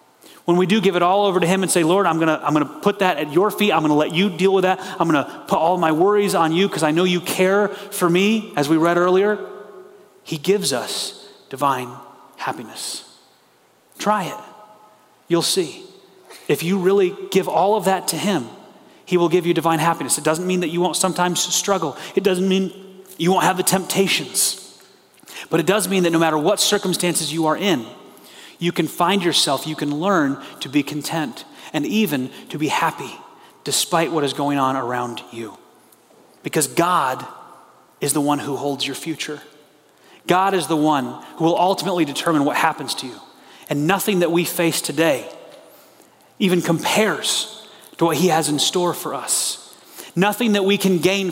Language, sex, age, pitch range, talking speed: English, male, 30-49, 155-195 Hz, 190 wpm